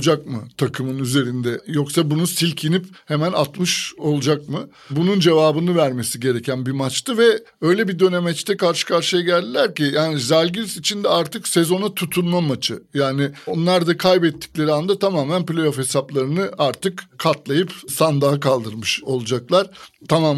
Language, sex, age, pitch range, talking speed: Turkish, male, 60-79, 140-180 Hz, 140 wpm